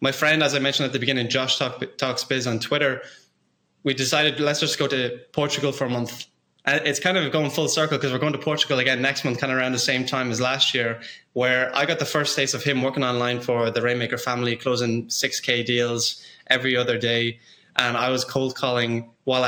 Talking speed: 230 wpm